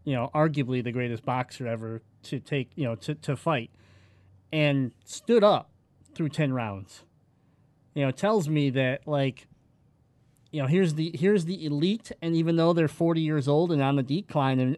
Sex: male